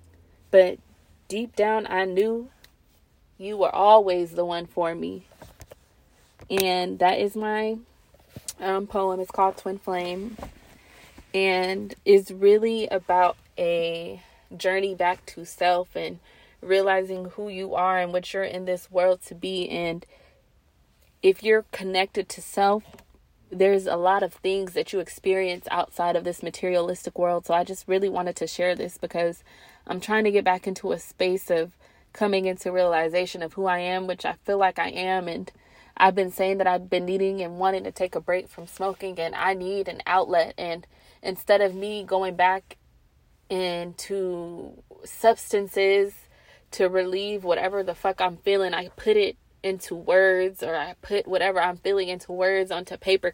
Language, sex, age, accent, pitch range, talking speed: English, female, 20-39, American, 180-195 Hz, 165 wpm